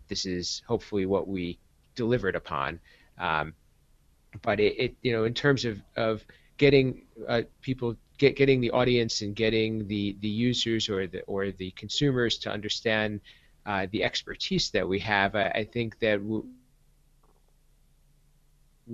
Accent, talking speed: American, 150 wpm